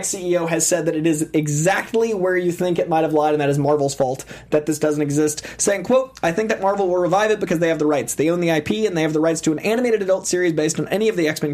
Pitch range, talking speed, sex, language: 150-180 Hz, 295 wpm, male, English